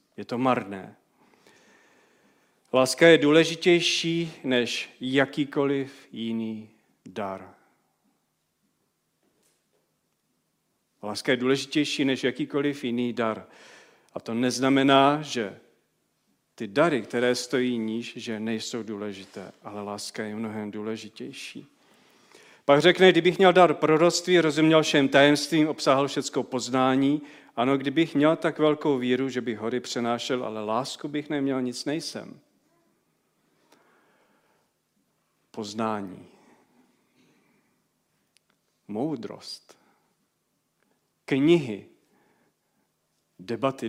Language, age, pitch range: Czech, 40-59, 115-145 Hz